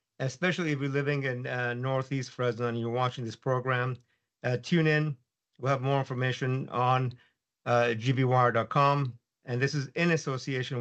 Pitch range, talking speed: 120-140 Hz, 155 wpm